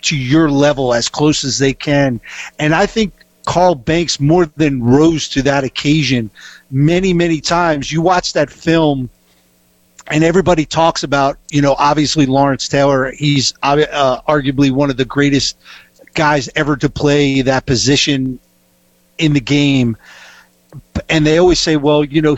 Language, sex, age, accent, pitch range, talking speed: English, male, 50-69, American, 140-165 Hz, 155 wpm